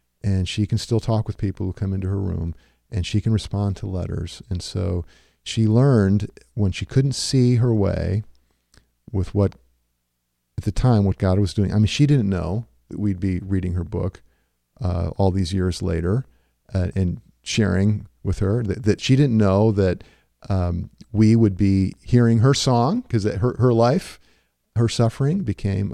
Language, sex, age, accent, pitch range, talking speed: English, male, 50-69, American, 90-115 Hz, 180 wpm